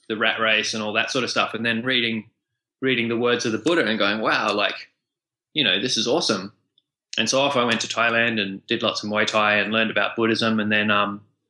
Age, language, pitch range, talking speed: 20-39, English, 105-120 Hz, 245 wpm